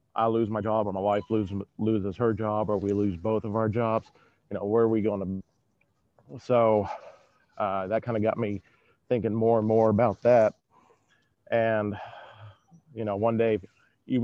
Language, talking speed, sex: English, 185 wpm, male